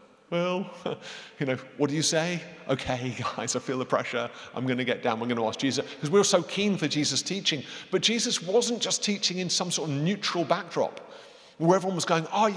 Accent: British